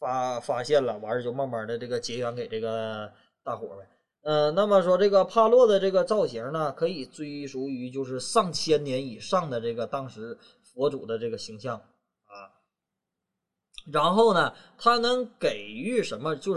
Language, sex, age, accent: Chinese, male, 20-39, native